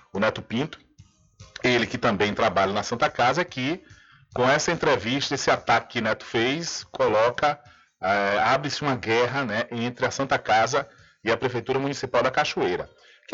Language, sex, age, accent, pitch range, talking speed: Portuguese, male, 40-59, Brazilian, 115-150 Hz, 160 wpm